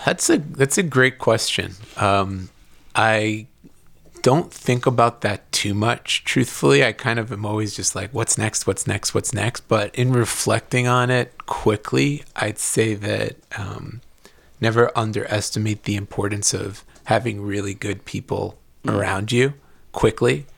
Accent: American